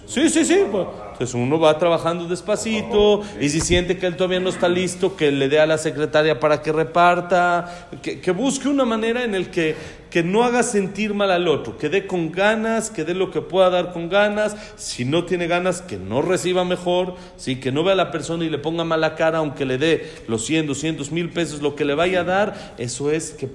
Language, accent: Spanish, Mexican